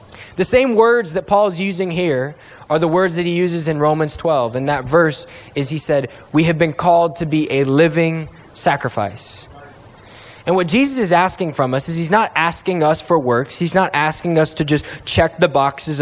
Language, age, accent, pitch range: English, 10-29, American, 145-195 Hz